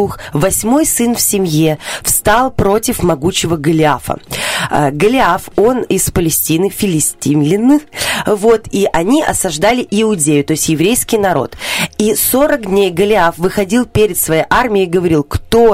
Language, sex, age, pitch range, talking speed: Russian, female, 20-39, 160-225 Hz, 125 wpm